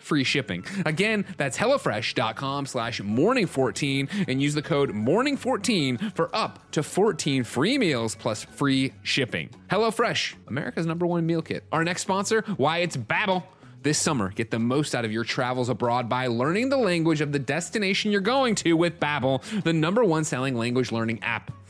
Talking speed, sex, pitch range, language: 175 wpm, male, 120-170 Hz, English